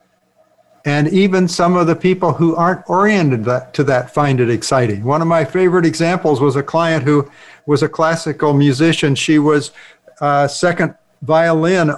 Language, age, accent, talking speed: English, 60-79, American, 160 wpm